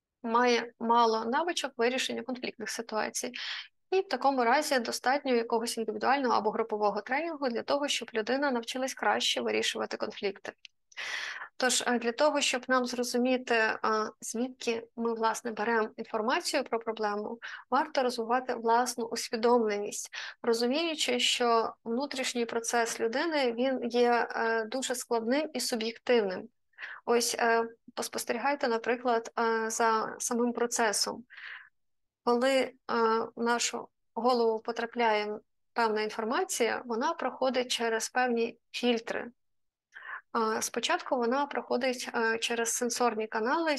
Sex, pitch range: female, 225-260 Hz